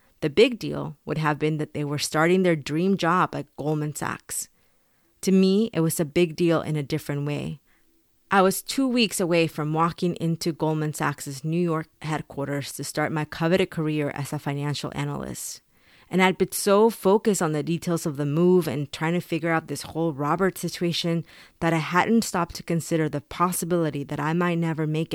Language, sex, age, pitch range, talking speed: English, female, 30-49, 150-180 Hz, 195 wpm